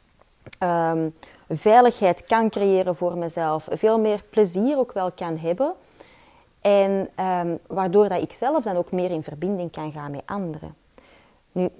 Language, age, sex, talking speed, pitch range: Dutch, 30-49, female, 135 wpm, 165-215 Hz